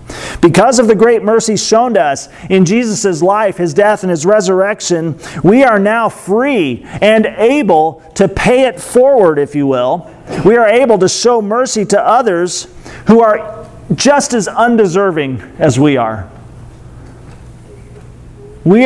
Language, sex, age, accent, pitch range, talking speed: English, male, 40-59, American, 150-215 Hz, 145 wpm